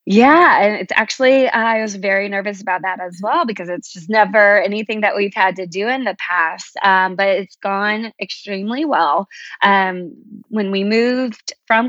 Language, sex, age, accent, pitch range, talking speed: English, female, 20-39, American, 185-220 Hz, 185 wpm